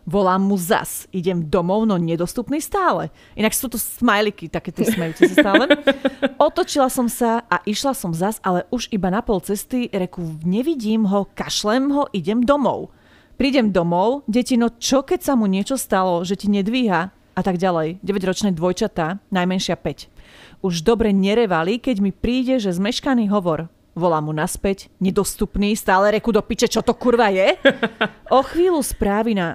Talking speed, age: 160 wpm, 30-49